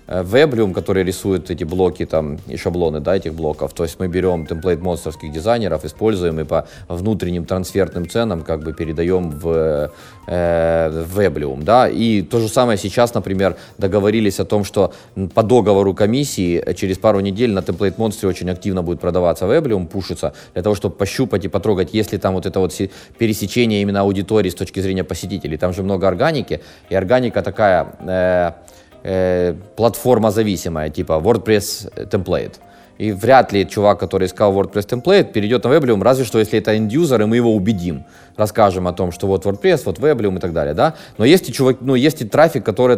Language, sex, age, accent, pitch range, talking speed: Russian, male, 20-39, native, 90-115 Hz, 180 wpm